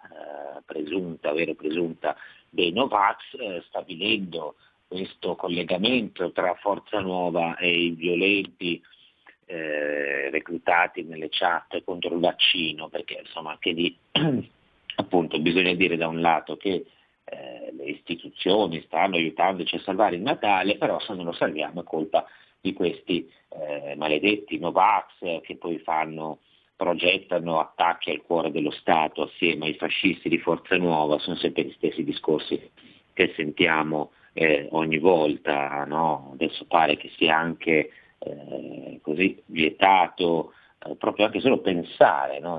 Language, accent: Italian, native